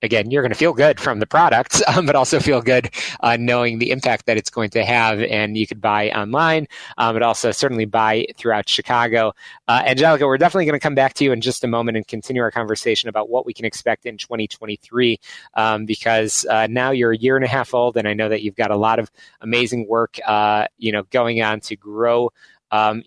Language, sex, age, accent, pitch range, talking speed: English, male, 30-49, American, 110-125 Hz, 235 wpm